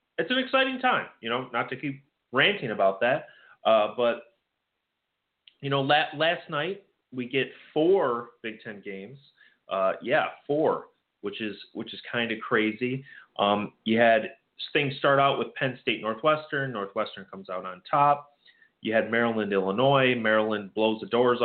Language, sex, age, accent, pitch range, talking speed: English, male, 30-49, American, 110-135 Hz, 160 wpm